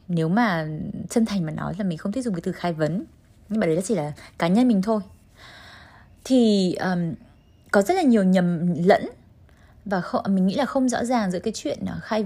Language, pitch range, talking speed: Vietnamese, 165-225 Hz, 220 wpm